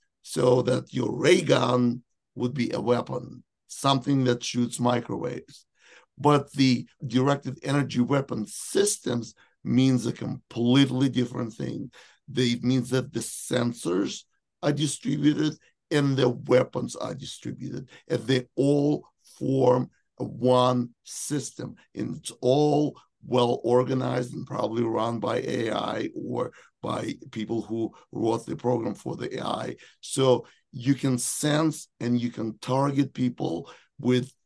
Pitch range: 120-140 Hz